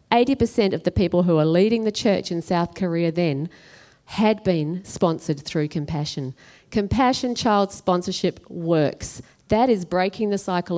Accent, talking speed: Australian, 145 wpm